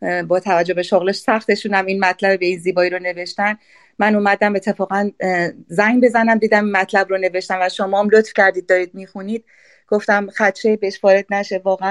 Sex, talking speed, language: female, 175 wpm, Persian